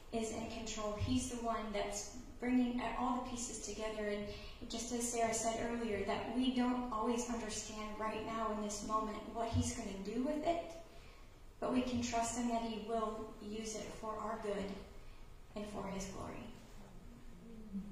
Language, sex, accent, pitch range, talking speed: English, female, American, 215-240 Hz, 175 wpm